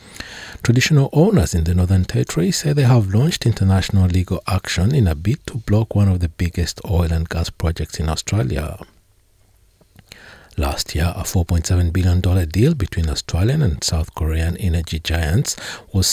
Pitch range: 80-105 Hz